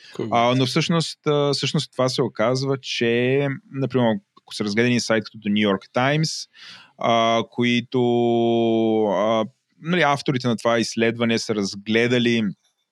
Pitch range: 105-130 Hz